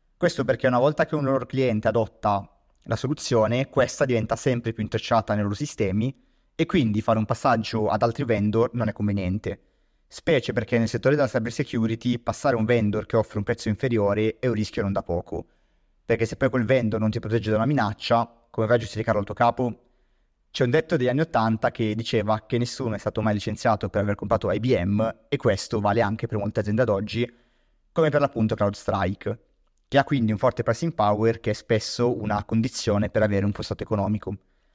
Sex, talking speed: male, 205 wpm